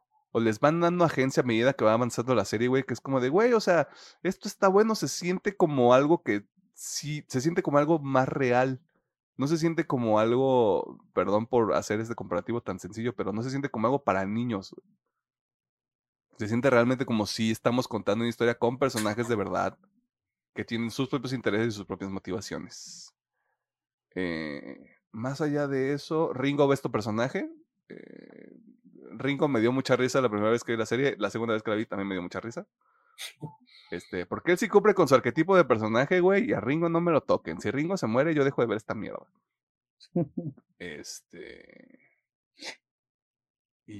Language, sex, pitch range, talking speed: Spanish, male, 110-160 Hz, 190 wpm